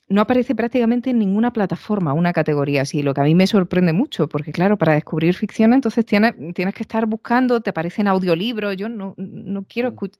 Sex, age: female, 30-49